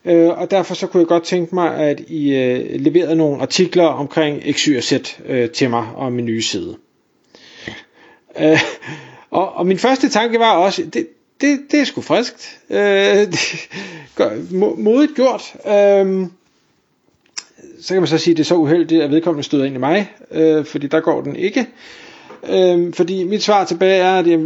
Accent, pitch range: native, 155-210 Hz